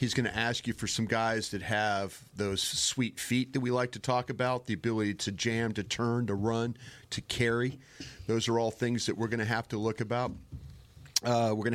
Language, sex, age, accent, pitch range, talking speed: English, male, 40-59, American, 105-125 Hz, 225 wpm